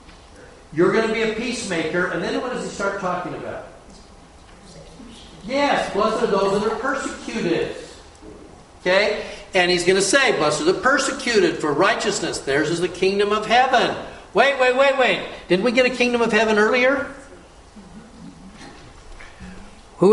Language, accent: English, American